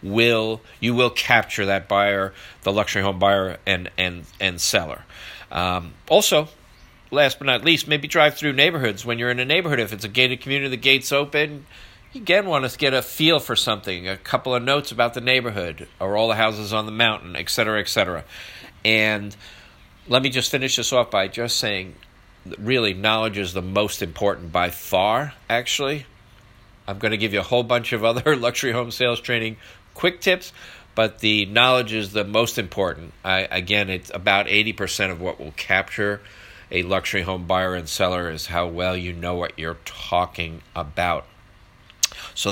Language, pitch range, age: English, 95-125 Hz, 50-69